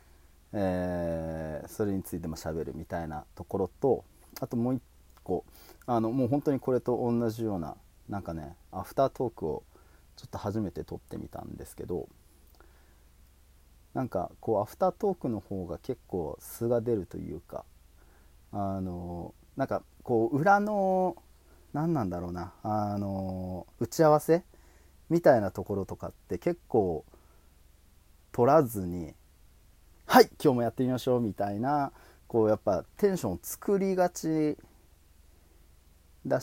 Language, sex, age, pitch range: Japanese, male, 40-59, 80-125 Hz